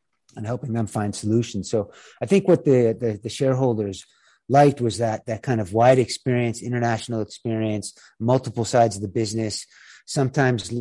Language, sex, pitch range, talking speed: English, male, 110-130 Hz, 160 wpm